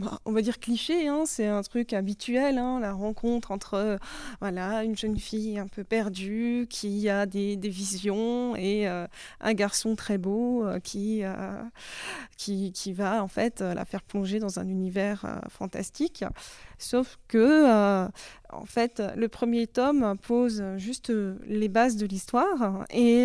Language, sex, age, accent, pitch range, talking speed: French, female, 20-39, French, 200-245 Hz, 150 wpm